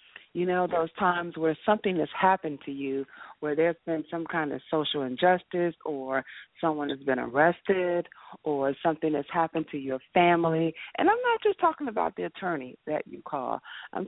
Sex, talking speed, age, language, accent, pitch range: female, 180 wpm, 40-59, English, American, 150-195 Hz